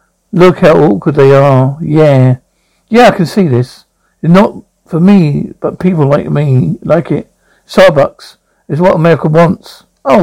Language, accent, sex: English, British, male